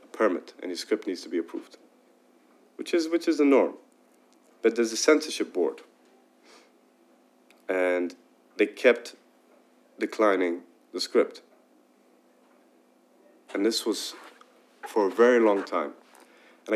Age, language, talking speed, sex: 30-49, English, 120 wpm, male